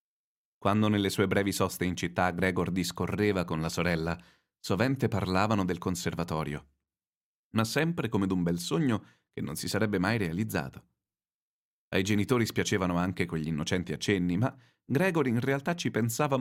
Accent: native